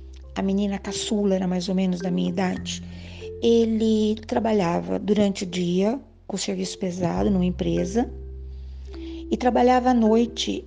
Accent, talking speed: Brazilian, 135 wpm